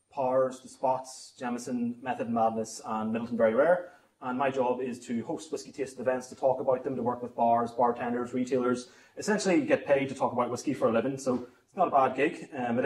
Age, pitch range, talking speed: 30-49, 125-175 Hz, 230 wpm